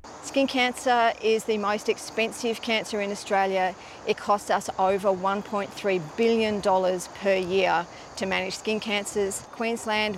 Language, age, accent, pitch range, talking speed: Greek, 30-49, Australian, 115-190 Hz, 130 wpm